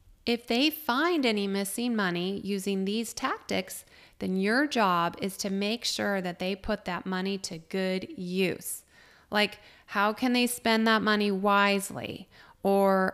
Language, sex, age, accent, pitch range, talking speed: English, female, 30-49, American, 185-215 Hz, 150 wpm